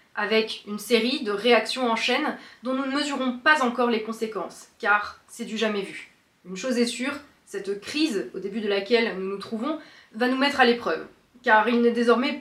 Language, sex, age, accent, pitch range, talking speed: French, female, 20-39, French, 210-260 Hz, 205 wpm